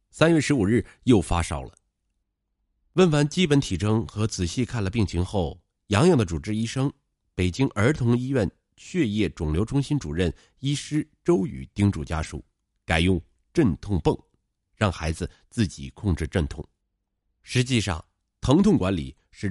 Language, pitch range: Chinese, 85-115 Hz